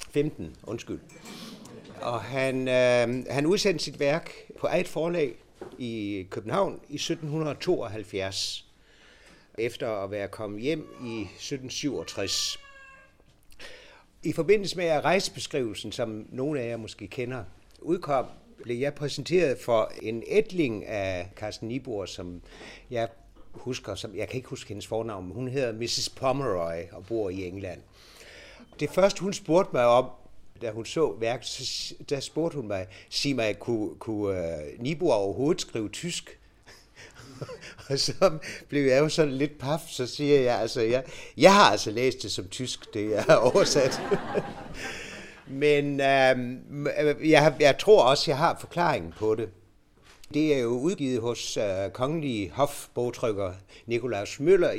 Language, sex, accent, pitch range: Danish, male, native, 105-150 Hz